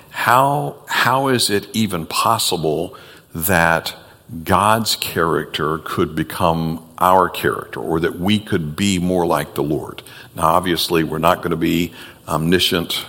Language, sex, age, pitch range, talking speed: English, male, 60-79, 85-100 Hz, 140 wpm